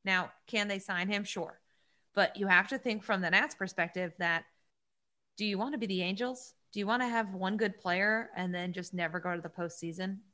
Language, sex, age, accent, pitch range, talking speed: English, female, 30-49, American, 180-220 Hz, 225 wpm